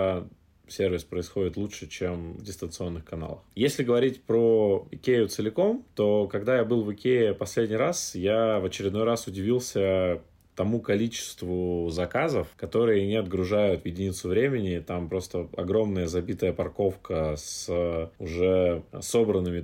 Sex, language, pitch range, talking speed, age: male, Russian, 85-105 Hz, 130 wpm, 20-39